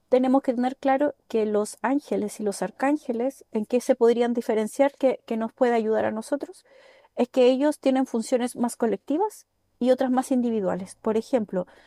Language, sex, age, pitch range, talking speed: Spanish, female, 30-49, 225-285 Hz, 170 wpm